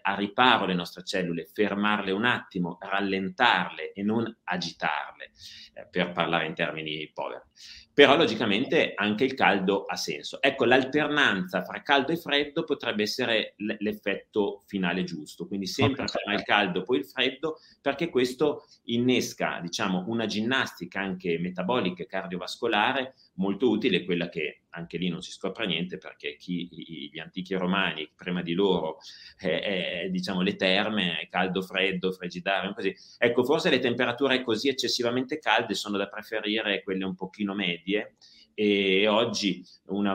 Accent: native